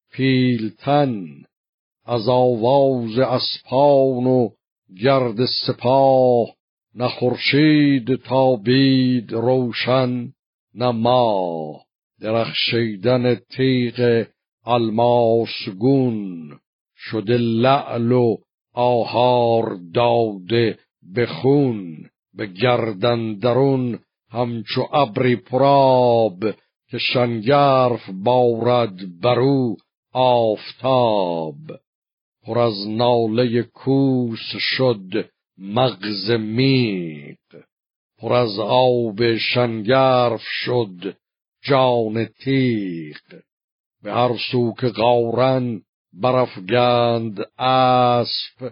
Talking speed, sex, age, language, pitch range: 70 wpm, male, 60-79, Persian, 115-130 Hz